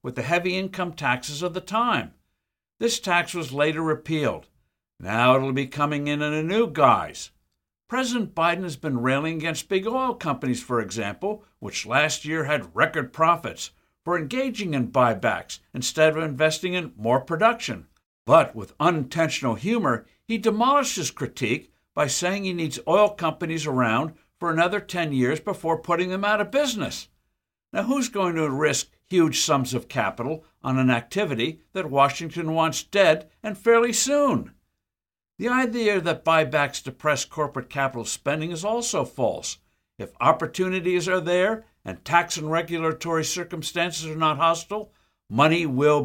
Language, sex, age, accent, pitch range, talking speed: English, male, 60-79, American, 140-185 Hz, 155 wpm